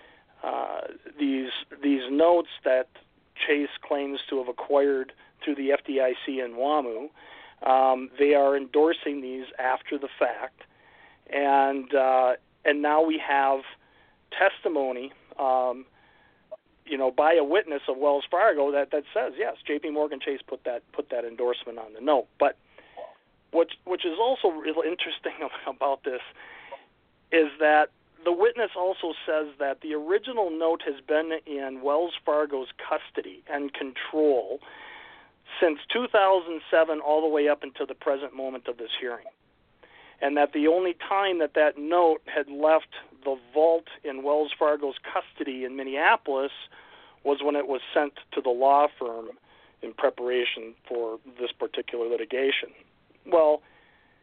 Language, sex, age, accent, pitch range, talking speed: English, male, 40-59, American, 135-165 Hz, 145 wpm